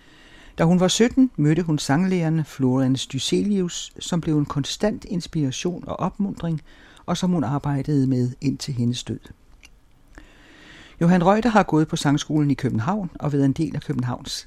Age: 60-79